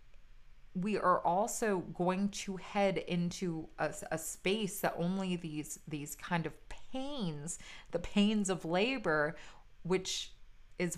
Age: 30-49